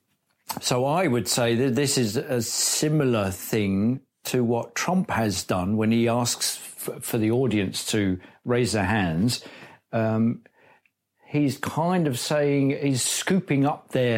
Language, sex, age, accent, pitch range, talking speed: English, male, 50-69, British, 115-145 Hz, 145 wpm